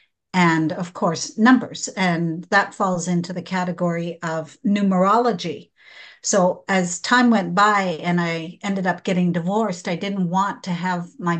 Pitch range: 180-225 Hz